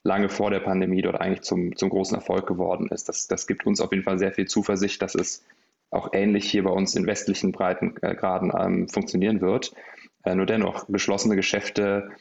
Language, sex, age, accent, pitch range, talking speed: German, male, 20-39, German, 95-105 Hz, 195 wpm